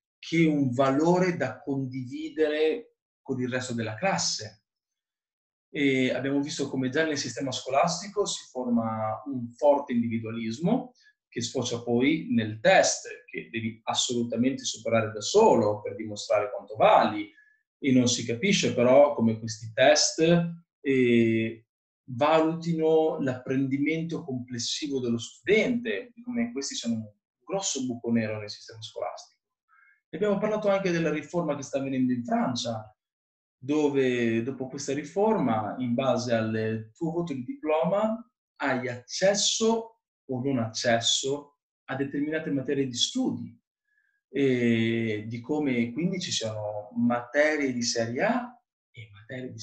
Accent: native